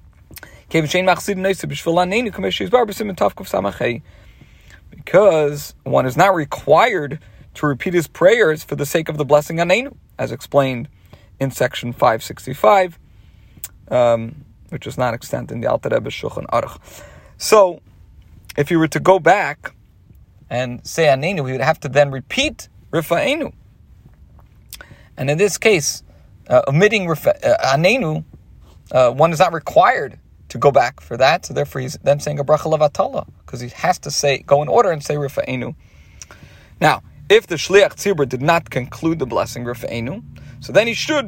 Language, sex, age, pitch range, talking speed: English, male, 40-59, 125-175 Hz, 135 wpm